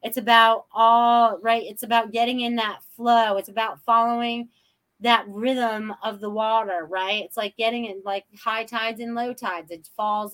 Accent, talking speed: American, 180 wpm